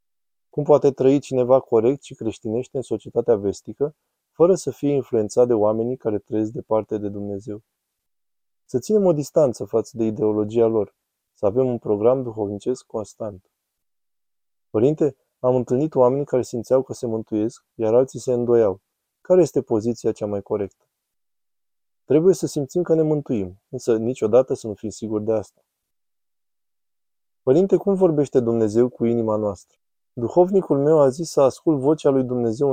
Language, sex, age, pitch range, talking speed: Romanian, male, 20-39, 110-135 Hz, 155 wpm